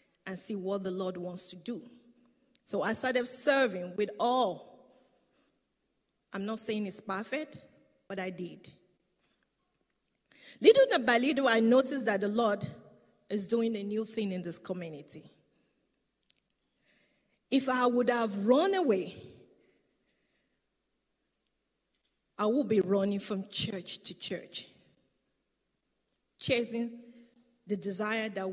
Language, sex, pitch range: English, female, 190-240 Hz